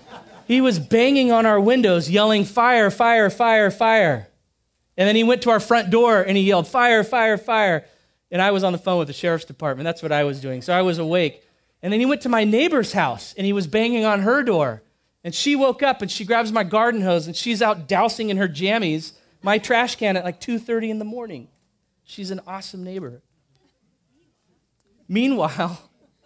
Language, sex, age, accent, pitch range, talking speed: English, male, 30-49, American, 170-235 Hz, 205 wpm